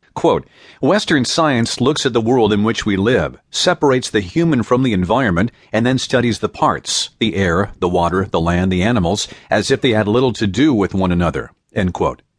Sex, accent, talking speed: male, American, 195 wpm